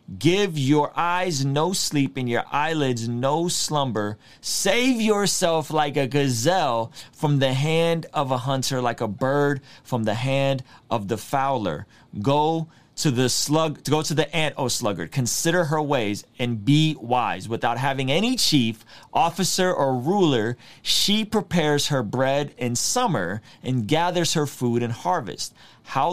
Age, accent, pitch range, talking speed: 30-49, American, 120-170 Hz, 155 wpm